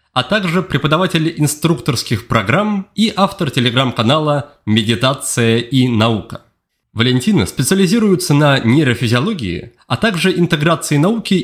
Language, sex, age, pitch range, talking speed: Russian, male, 30-49, 120-170 Hz, 100 wpm